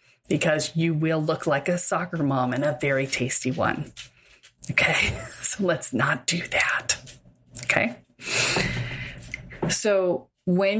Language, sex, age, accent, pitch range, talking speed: English, female, 30-49, American, 150-185 Hz, 120 wpm